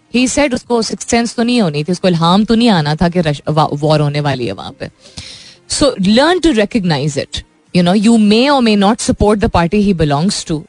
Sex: female